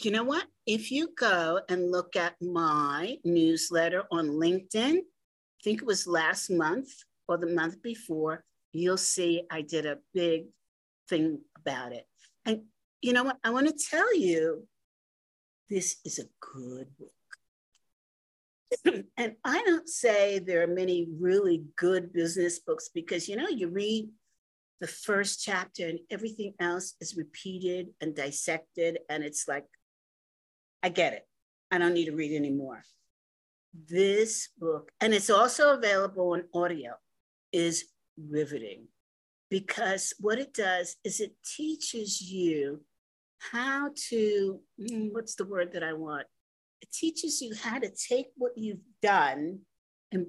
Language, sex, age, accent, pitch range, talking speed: English, female, 50-69, American, 170-230 Hz, 145 wpm